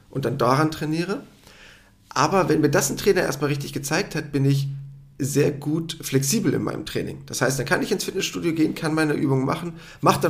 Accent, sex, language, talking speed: German, male, German, 210 wpm